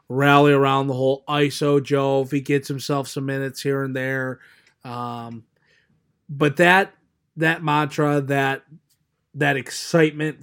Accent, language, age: American, English, 30-49